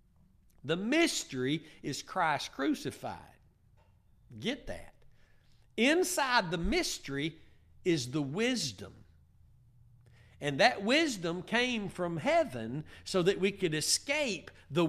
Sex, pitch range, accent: male, 155-255 Hz, American